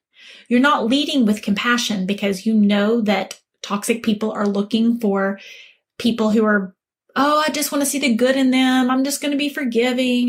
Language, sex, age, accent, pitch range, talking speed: English, female, 30-49, American, 205-265 Hz, 190 wpm